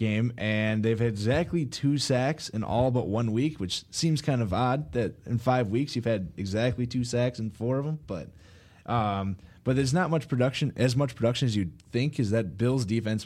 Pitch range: 100-125 Hz